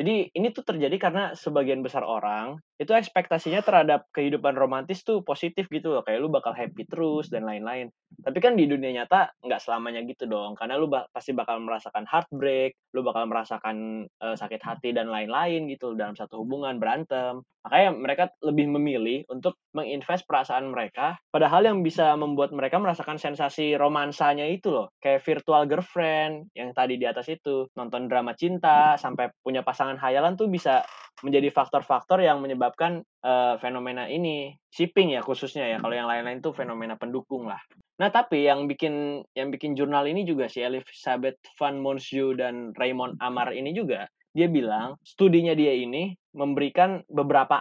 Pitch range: 125-160 Hz